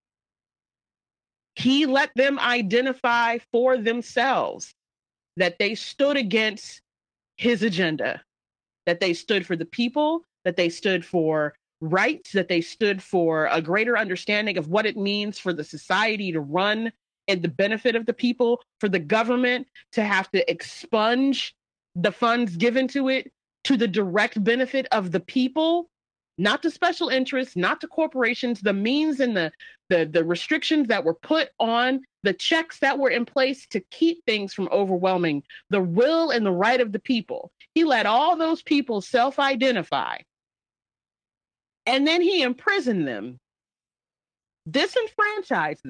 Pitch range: 190-275 Hz